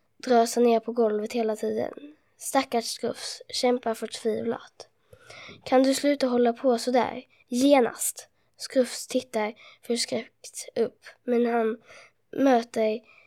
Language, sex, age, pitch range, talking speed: Swedish, female, 20-39, 225-255 Hz, 120 wpm